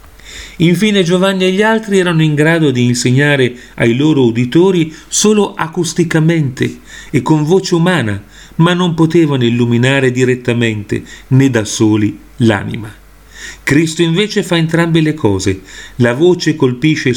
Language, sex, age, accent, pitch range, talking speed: Italian, male, 40-59, native, 120-160 Hz, 130 wpm